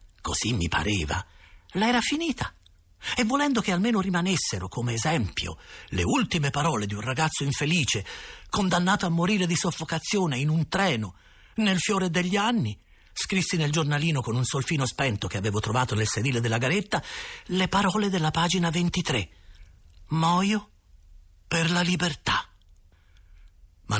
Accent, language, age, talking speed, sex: native, Italian, 50-69, 140 wpm, male